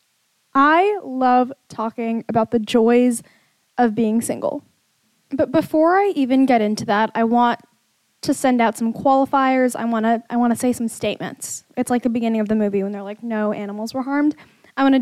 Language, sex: English, female